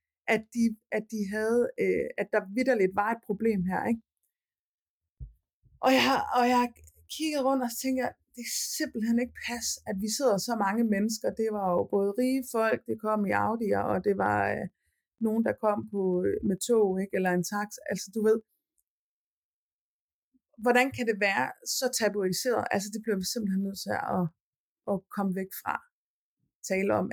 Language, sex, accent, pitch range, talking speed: Danish, female, native, 190-245 Hz, 180 wpm